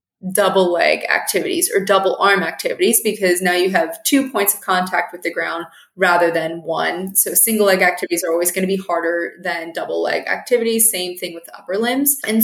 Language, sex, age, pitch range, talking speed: English, female, 20-39, 180-215 Hz, 205 wpm